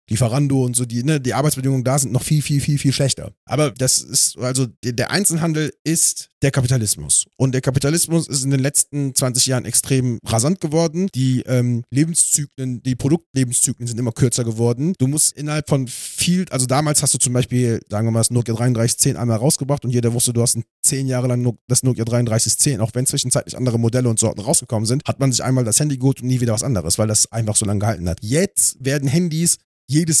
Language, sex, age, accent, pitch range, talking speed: German, male, 30-49, German, 125-150 Hz, 215 wpm